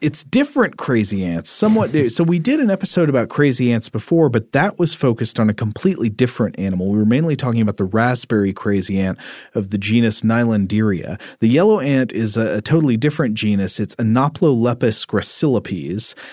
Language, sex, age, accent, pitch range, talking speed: English, male, 40-59, American, 105-135 Hz, 180 wpm